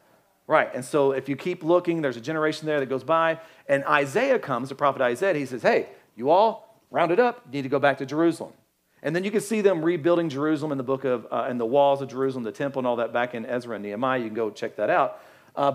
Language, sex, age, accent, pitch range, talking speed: English, male, 40-59, American, 135-185 Hz, 265 wpm